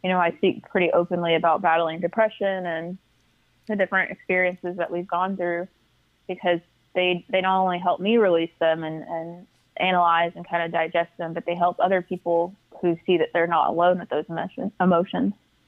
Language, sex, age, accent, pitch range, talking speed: English, female, 20-39, American, 170-185 Hz, 185 wpm